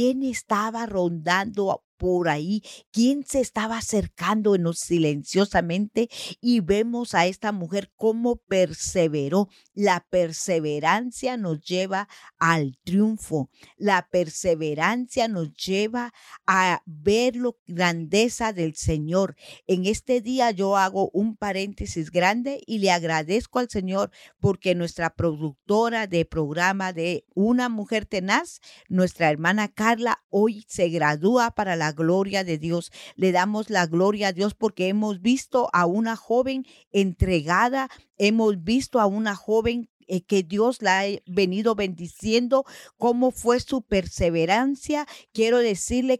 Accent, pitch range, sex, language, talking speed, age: American, 180-230 Hz, female, Spanish, 125 wpm, 50-69